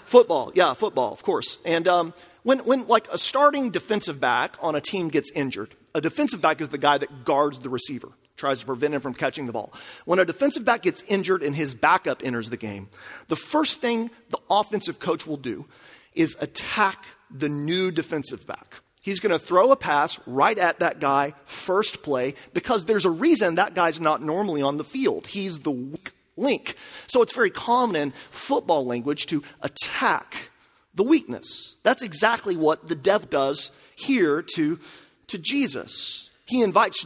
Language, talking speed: English, 185 wpm